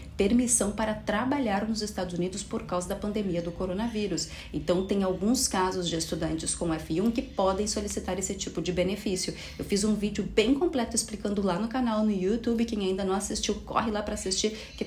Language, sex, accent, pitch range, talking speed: Portuguese, female, Brazilian, 185-220 Hz, 195 wpm